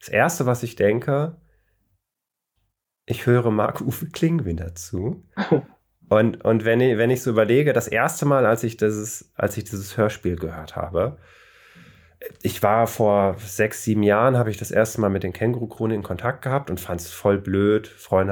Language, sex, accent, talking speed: German, male, German, 185 wpm